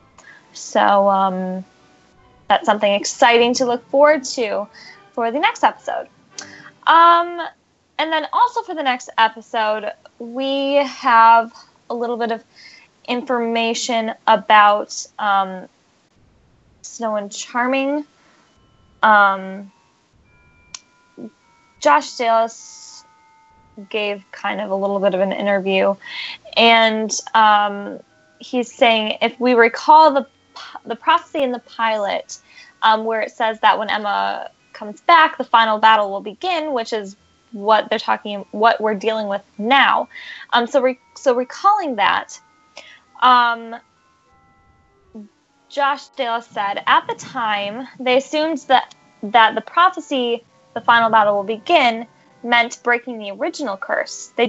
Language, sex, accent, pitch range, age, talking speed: English, female, American, 215-275 Hz, 10-29, 125 wpm